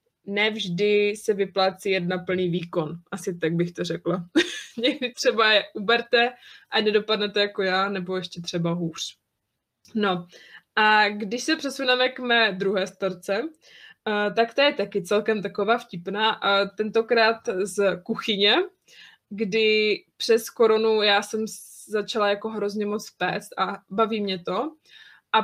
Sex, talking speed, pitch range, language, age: female, 135 wpm, 200-235 Hz, Czech, 20-39